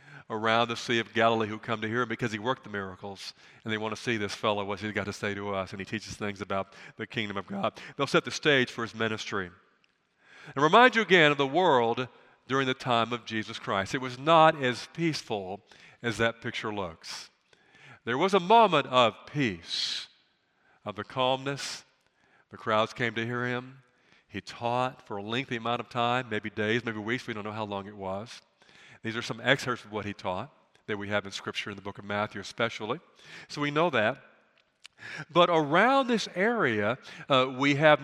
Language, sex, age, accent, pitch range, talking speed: English, male, 50-69, American, 105-135 Hz, 205 wpm